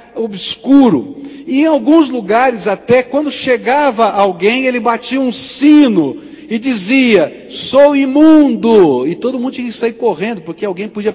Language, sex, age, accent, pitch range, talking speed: Portuguese, male, 60-79, Brazilian, 175-270 Hz, 145 wpm